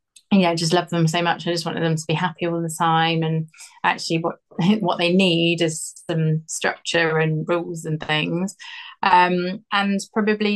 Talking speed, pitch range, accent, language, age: 190 wpm, 165-200 Hz, British, English, 20-39